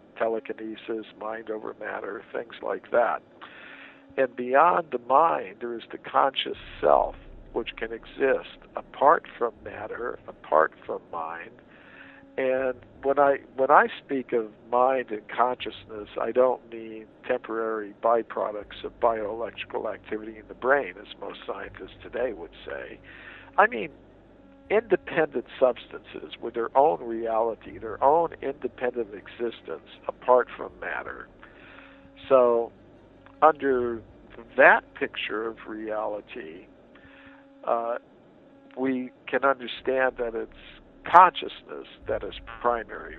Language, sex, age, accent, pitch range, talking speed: English, male, 60-79, American, 110-130 Hz, 115 wpm